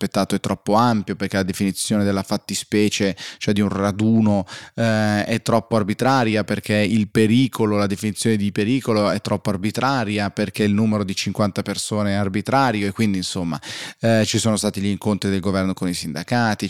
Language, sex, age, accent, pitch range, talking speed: Italian, male, 20-39, native, 95-110 Hz, 175 wpm